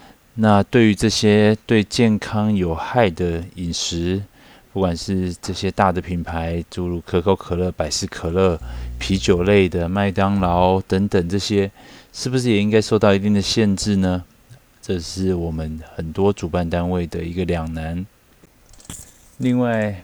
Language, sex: Chinese, male